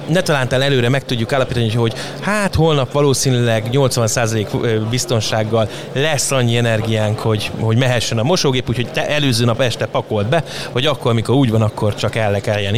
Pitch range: 115-140 Hz